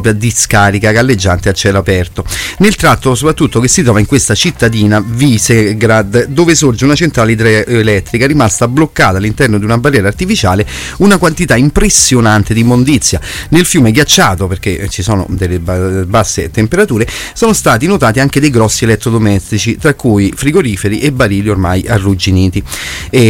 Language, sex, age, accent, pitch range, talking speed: Italian, male, 30-49, native, 100-140 Hz, 145 wpm